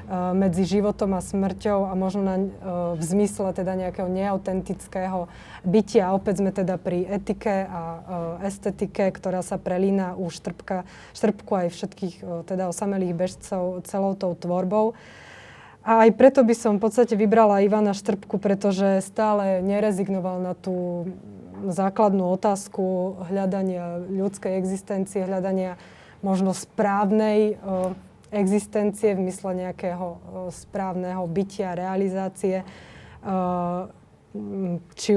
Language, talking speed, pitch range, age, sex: Slovak, 115 wpm, 180-200 Hz, 20-39, female